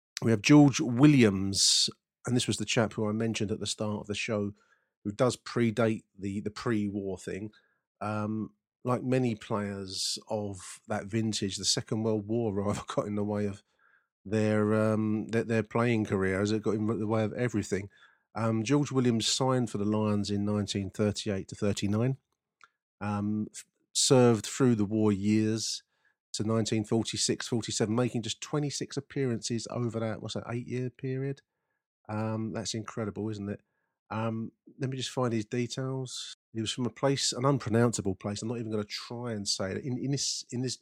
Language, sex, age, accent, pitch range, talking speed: English, male, 40-59, British, 105-120 Hz, 180 wpm